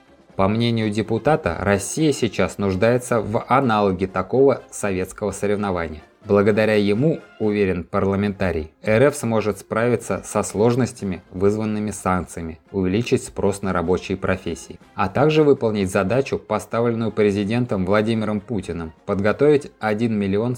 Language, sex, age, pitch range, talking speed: Russian, male, 20-39, 95-120 Hz, 110 wpm